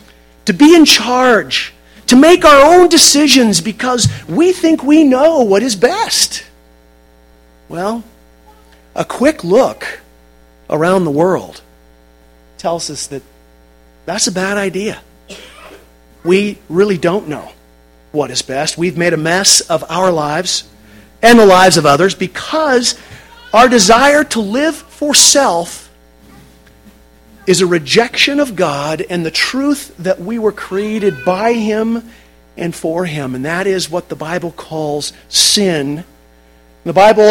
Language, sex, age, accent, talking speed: English, male, 40-59, American, 135 wpm